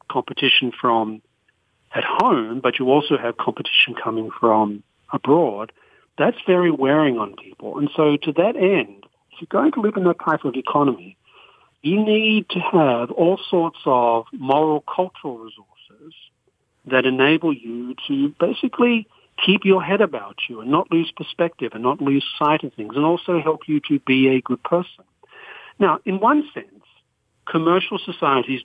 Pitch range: 130-185 Hz